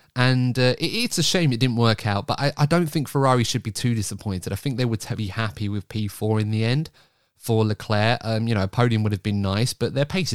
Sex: male